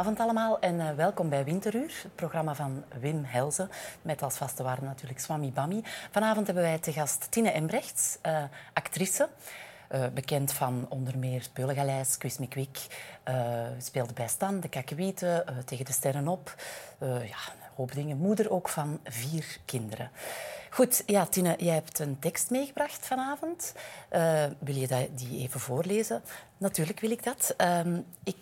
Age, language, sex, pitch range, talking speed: 30-49, Dutch, female, 135-185 Hz, 150 wpm